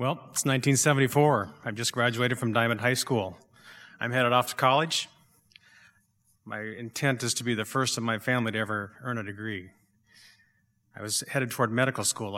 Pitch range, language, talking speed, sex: 105-125 Hz, English, 175 wpm, male